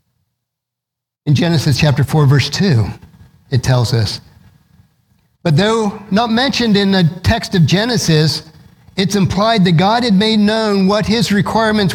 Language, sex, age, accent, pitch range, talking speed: English, male, 50-69, American, 135-180 Hz, 140 wpm